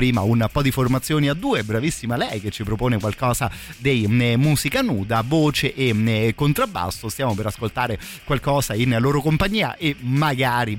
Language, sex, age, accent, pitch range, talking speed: Italian, male, 30-49, native, 105-130 Hz, 155 wpm